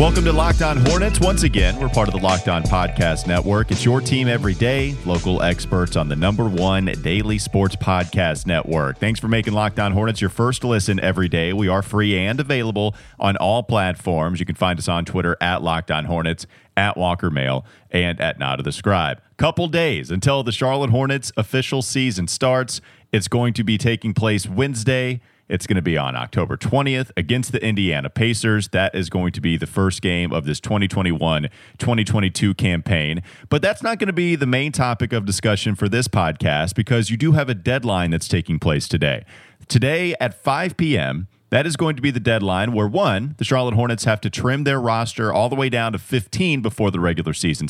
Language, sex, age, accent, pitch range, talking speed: English, male, 40-59, American, 95-125 Hz, 200 wpm